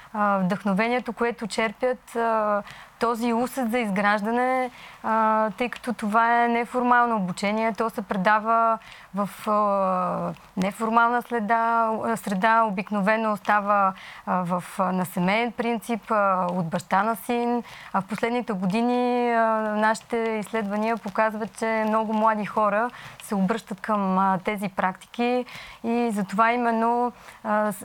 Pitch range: 205-235 Hz